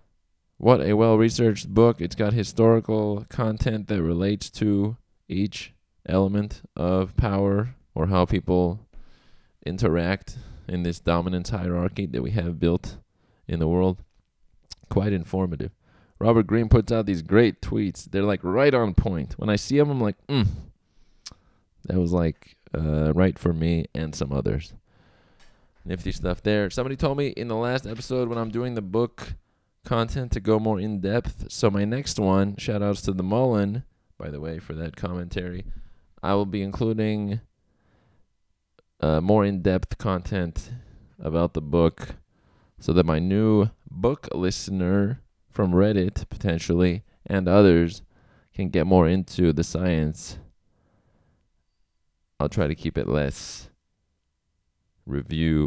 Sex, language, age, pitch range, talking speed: male, English, 20-39, 85-110 Hz, 140 wpm